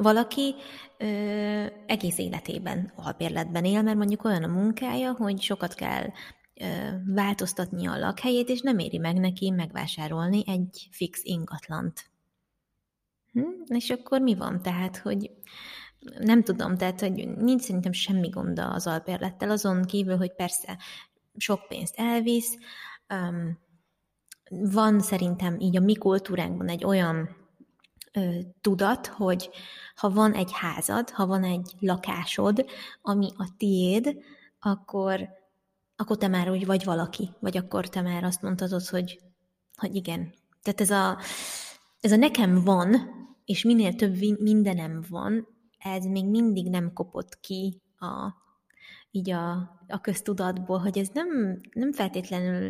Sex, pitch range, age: female, 180-215 Hz, 20-39